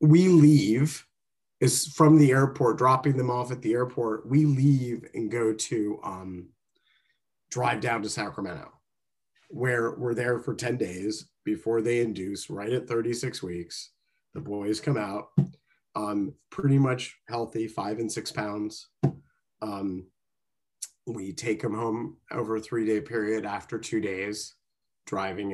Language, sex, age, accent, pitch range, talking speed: English, male, 30-49, American, 110-135 Hz, 140 wpm